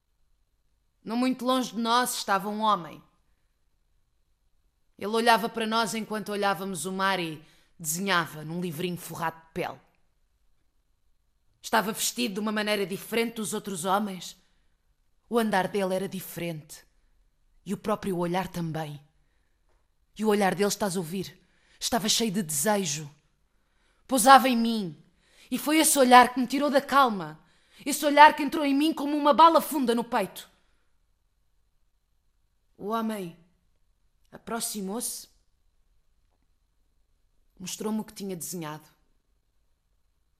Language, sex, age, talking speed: Portuguese, female, 20-39, 125 wpm